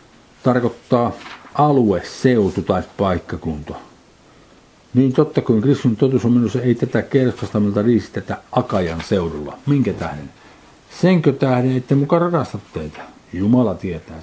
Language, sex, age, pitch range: Finnish, male, 50-69, 95-130 Hz